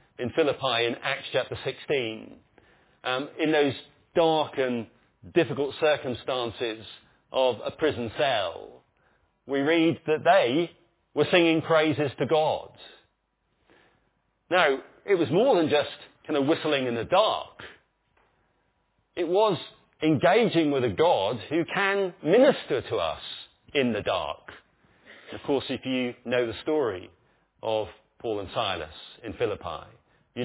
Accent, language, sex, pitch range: British, English, male, 120-160 Hz